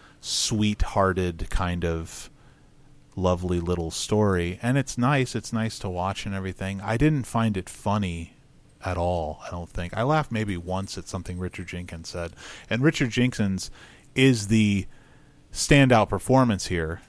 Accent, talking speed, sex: American, 150 wpm, male